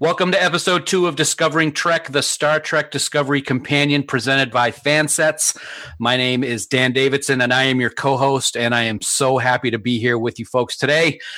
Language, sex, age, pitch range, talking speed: English, male, 40-59, 120-150 Hz, 195 wpm